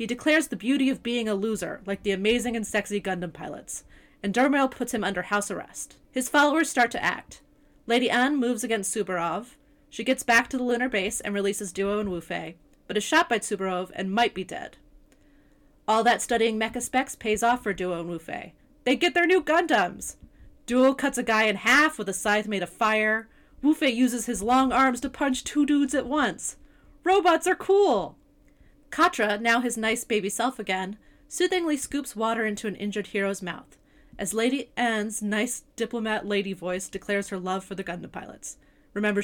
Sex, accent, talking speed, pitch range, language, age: female, American, 190 wpm, 200-260 Hz, English, 30-49